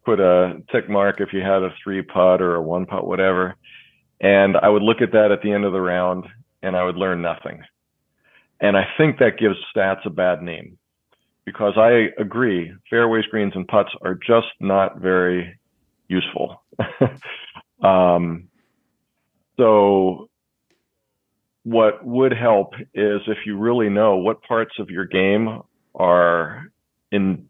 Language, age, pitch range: English, 40-59, 95-110 Hz